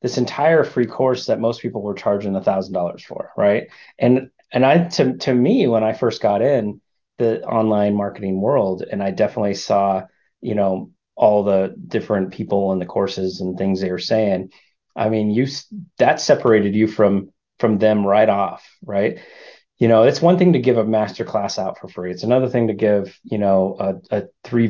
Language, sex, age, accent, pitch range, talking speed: English, male, 30-49, American, 100-125 Hz, 200 wpm